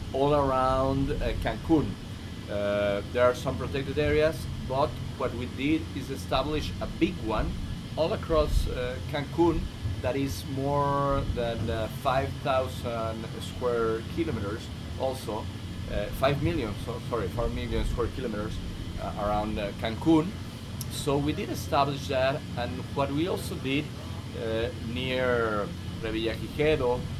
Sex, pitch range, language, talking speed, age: male, 100-135 Hz, English, 130 wpm, 30-49